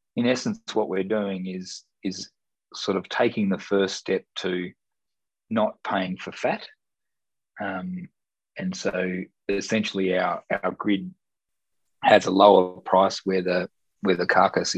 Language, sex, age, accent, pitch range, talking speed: English, male, 20-39, Australian, 95-110 Hz, 140 wpm